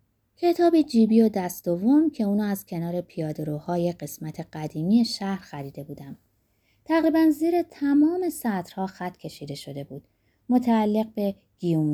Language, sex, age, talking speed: Persian, female, 20-39, 125 wpm